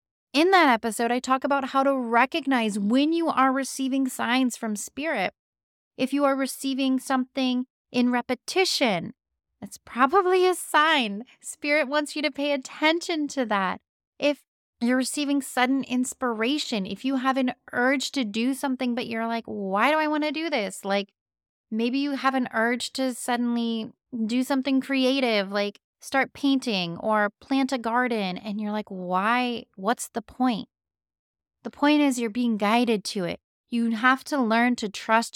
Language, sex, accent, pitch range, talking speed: English, female, American, 225-275 Hz, 165 wpm